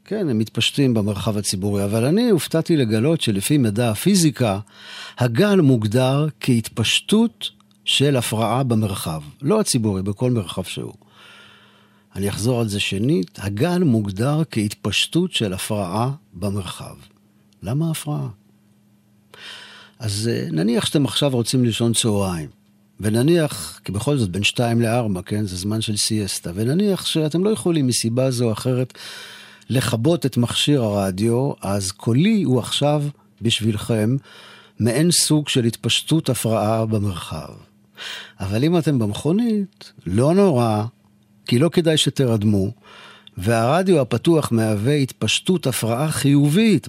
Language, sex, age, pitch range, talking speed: Hebrew, male, 50-69, 105-145 Hz, 120 wpm